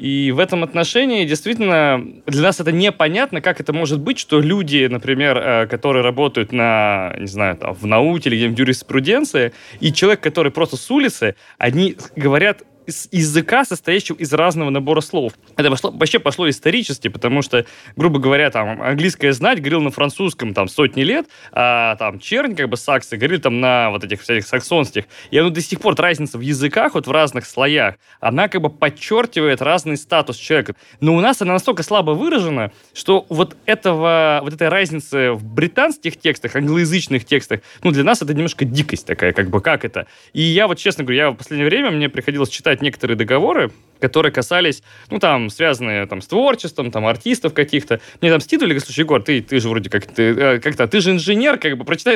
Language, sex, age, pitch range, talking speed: Russian, male, 20-39, 135-190 Hz, 190 wpm